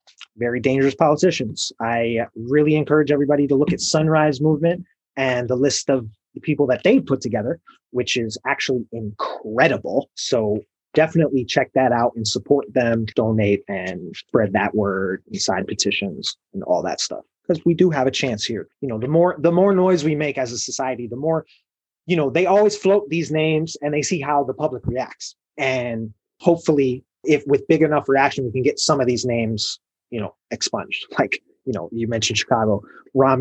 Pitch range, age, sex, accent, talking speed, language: 125-165 Hz, 30-49, male, American, 190 wpm, English